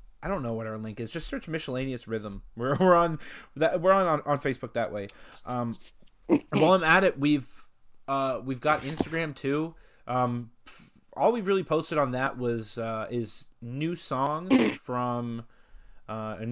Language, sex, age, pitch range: English, male, 20-39, 115-155 Hz